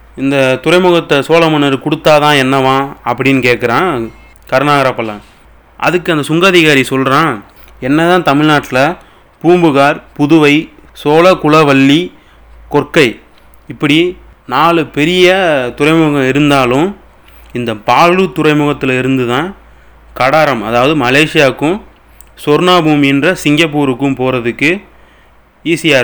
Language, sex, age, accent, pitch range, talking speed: Tamil, male, 30-49, native, 125-160 Hz, 80 wpm